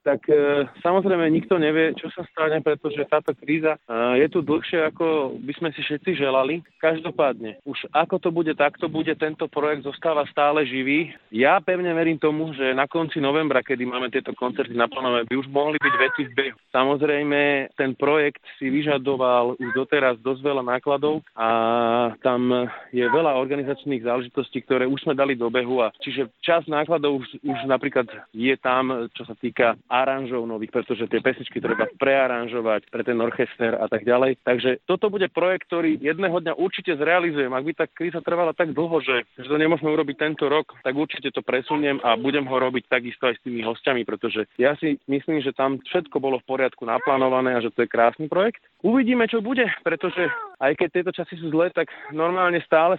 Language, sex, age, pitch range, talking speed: Slovak, male, 30-49, 130-165 Hz, 190 wpm